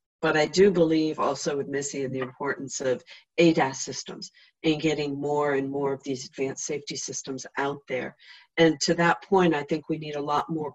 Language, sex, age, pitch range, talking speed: English, female, 50-69, 140-170 Hz, 200 wpm